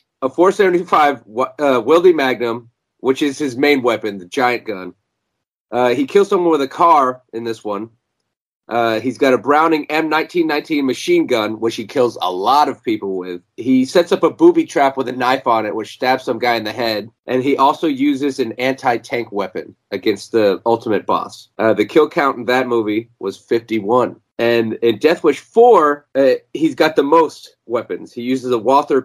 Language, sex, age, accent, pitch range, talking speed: English, male, 30-49, American, 120-155 Hz, 190 wpm